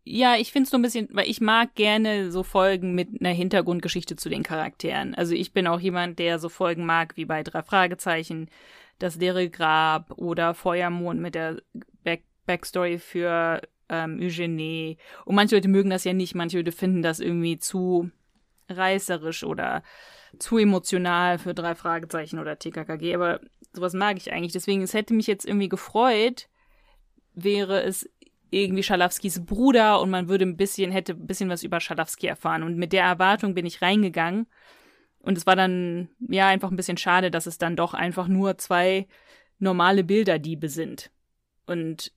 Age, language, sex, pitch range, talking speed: 20-39, German, female, 175-210 Hz, 175 wpm